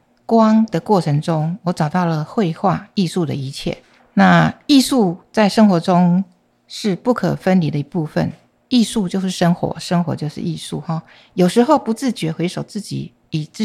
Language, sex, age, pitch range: Chinese, female, 50-69, 160-205 Hz